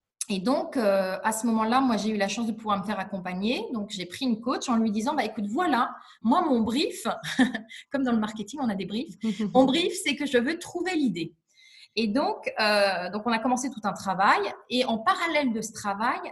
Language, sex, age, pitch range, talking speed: French, female, 20-39, 215-275 Hz, 230 wpm